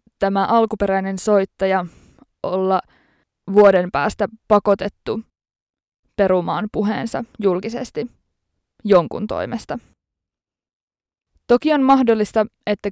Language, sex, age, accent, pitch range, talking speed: Finnish, female, 20-39, native, 190-230 Hz, 75 wpm